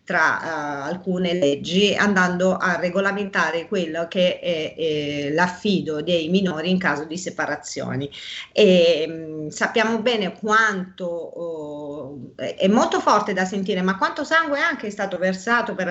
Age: 40-59